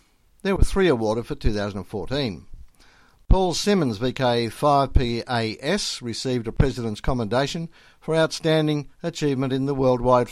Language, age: English, 60-79